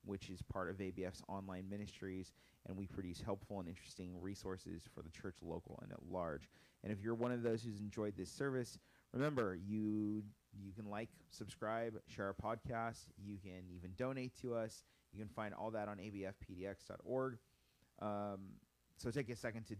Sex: male